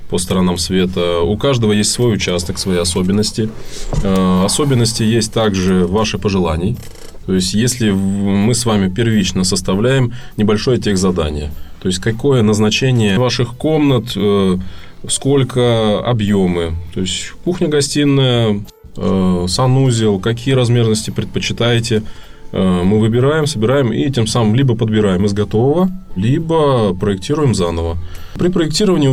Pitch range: 95-120 Hz